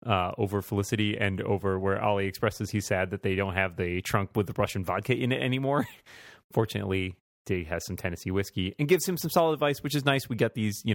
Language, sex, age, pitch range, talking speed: English, male, 30-49, 95-110 Hz, 230 wpm